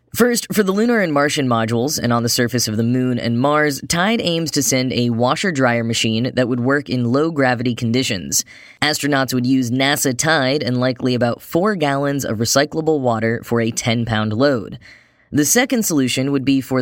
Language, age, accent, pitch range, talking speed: English, 10-29, American, 120-150 Hz, 185 wpm